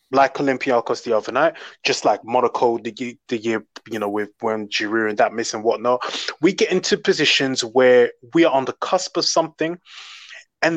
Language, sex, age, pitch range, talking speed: English, male, 20-39, 120-165 Hz, 190 wpm